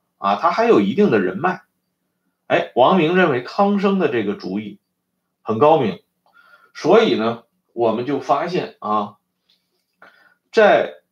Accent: native